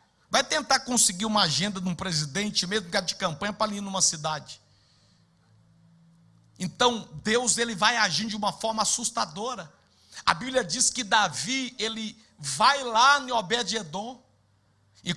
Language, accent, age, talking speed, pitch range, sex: Portuguese, Brazilian, 60-79, 155 wpm, 165-225 Hz, male